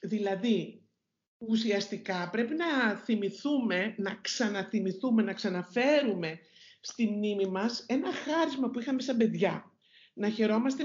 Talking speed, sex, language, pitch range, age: 110 wpm, male, Greek, 200-255 Hz, 50-69